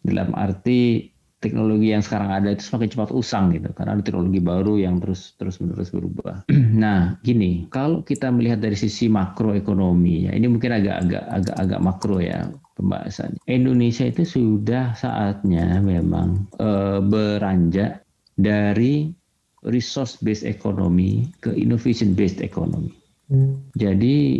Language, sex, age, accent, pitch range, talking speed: Indonesian, male, 50-69, native, 95-115 Hz, 130 wpm